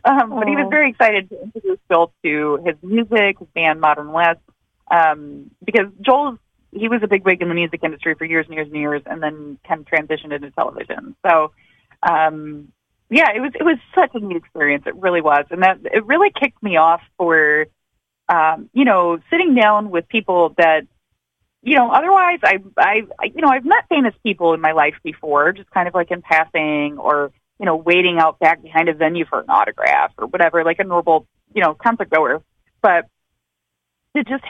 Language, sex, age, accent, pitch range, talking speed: English, female, 30-49, American, 160-230 Hz, 200 wpm